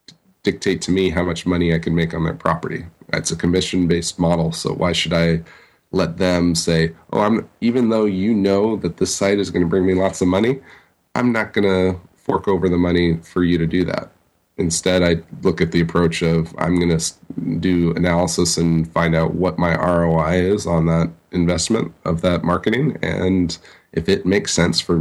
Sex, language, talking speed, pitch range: male, English, 200 wpm, 85-90 Hz